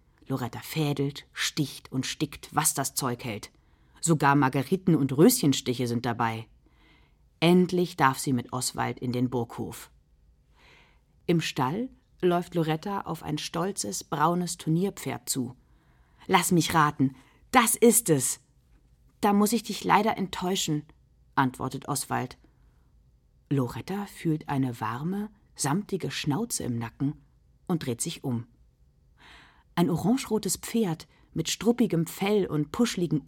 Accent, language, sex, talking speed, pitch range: German, German, female, 120 wpm, 130-200 Hz